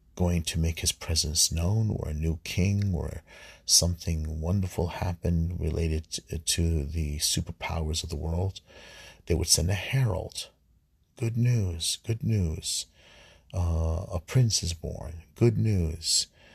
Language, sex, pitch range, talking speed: English, male, 80-95 Hz, 135 wpm